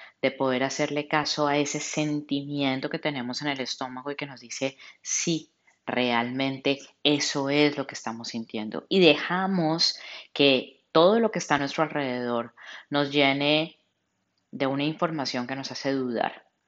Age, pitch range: 10-29, 125-150 Hz